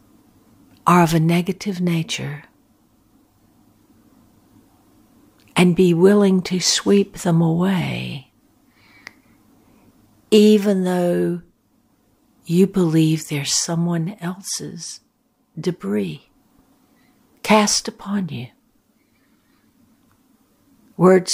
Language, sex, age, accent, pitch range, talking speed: English, female, 60-79, American, 170-255 Hz, 65 wpm